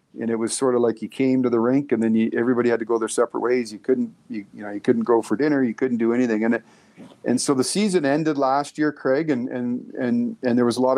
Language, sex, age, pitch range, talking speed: English, male, 40-59, 115-135 Hz, 290 wpm